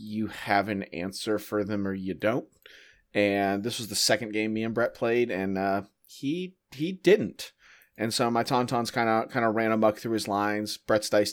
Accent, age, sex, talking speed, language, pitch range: American, 30-49, male, 205 wpm, English, 105-140 Hz